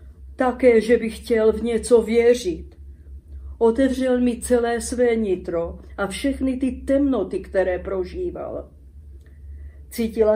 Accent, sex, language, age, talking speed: native, female, Czech, 50-69, 110 wpm